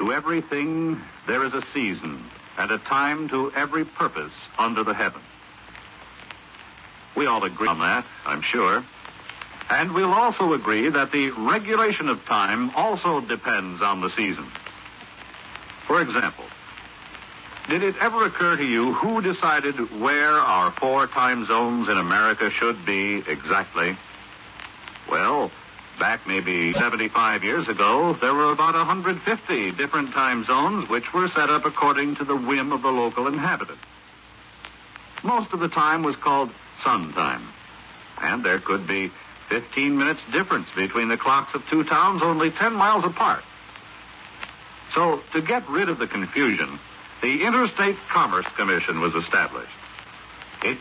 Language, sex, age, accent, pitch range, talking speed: English, male, 60-79, American, 120-175 Hz, 140 wpm